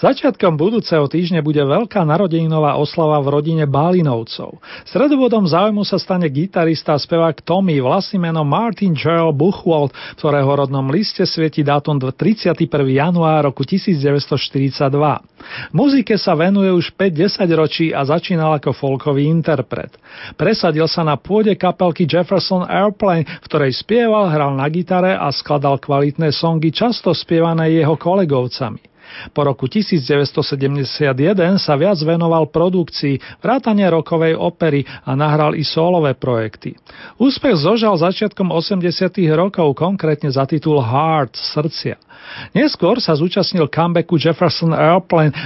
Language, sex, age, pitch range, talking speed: Slovak, male, 40-59, 145-185 Hz, 125 wpm